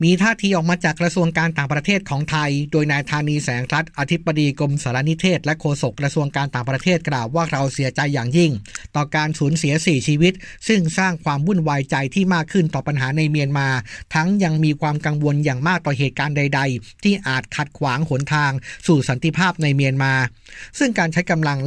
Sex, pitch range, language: male, 135-165 Hz, Thai